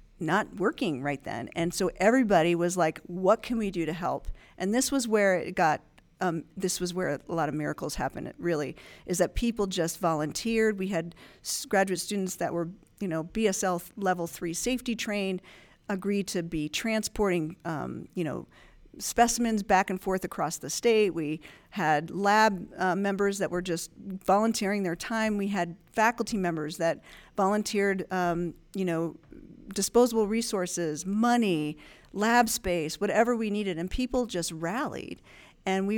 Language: English